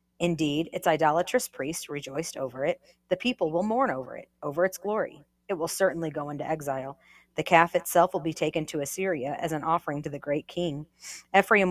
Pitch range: 160-195 Hz